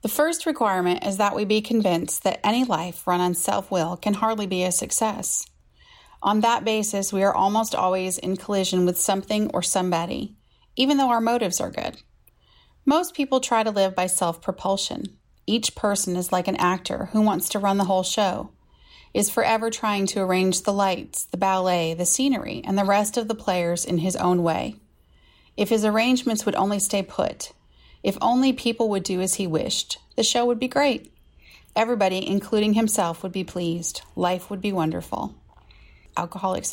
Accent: American